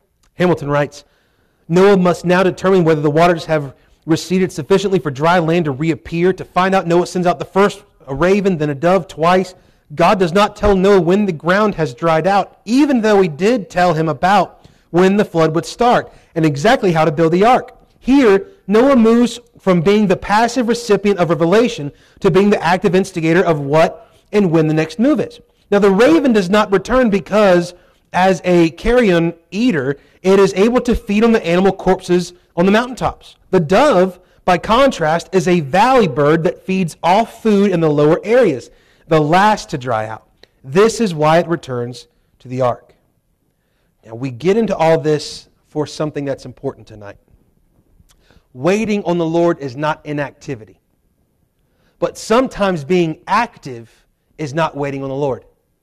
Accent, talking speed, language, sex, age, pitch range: American, 175 wpm, English, male, 30-49, 155-200 Hz